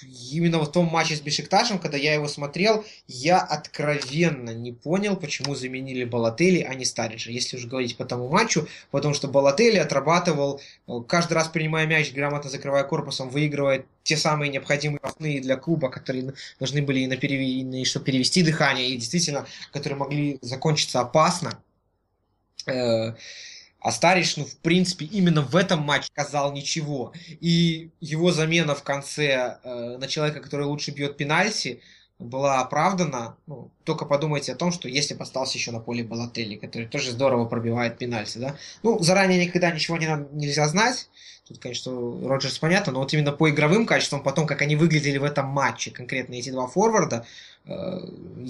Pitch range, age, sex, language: 130-160 Hz, 20-39, male, Russian